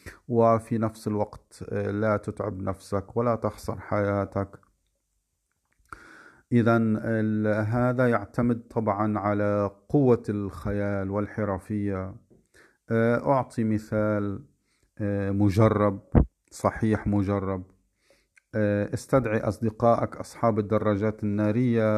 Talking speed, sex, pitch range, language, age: 75 wpm, male, 95-110 Hz, Arabic, 40-59